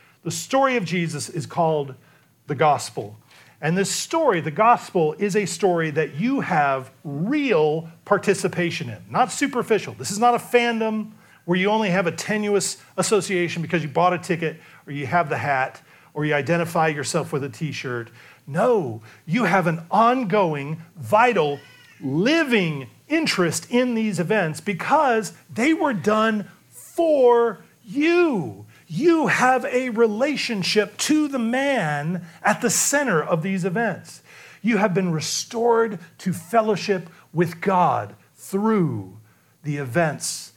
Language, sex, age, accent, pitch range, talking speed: English, male, 40-59, American, 140-210 Hz, 140 wpm